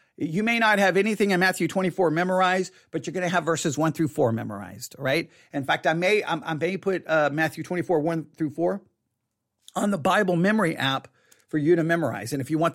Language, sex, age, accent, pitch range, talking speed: English, male, 40-59, American, 160-230 Hz, 220 wpm